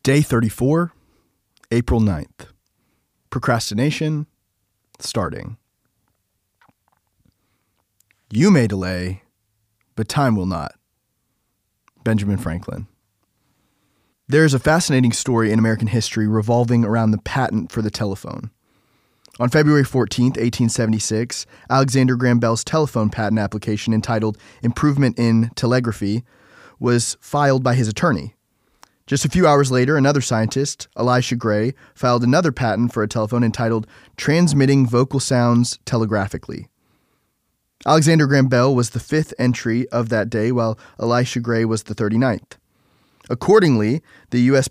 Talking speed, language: 115 wpm, English